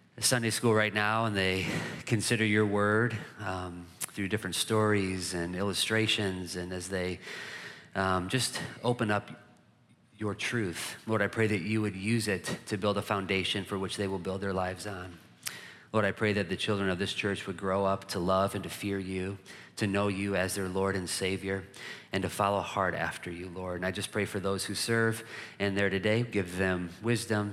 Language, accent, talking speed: English, American, 200 wpm